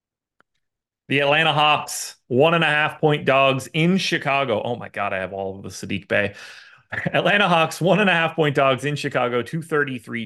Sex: male